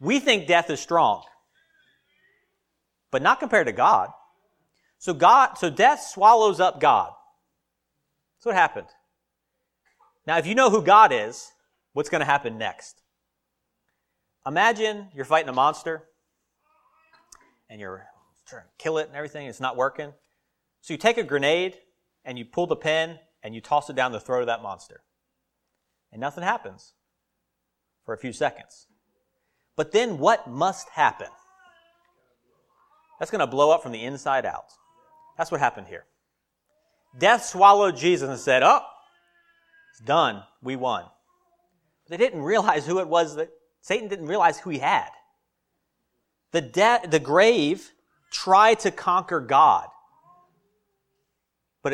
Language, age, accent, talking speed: English, 40-59, American, 145 wpm